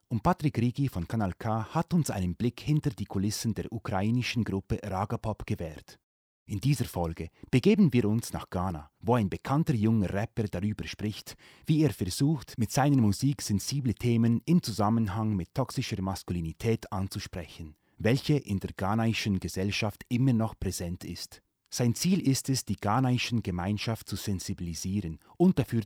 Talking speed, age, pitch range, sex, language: 155 wpm, 30-49, 95-125 Hz, male, German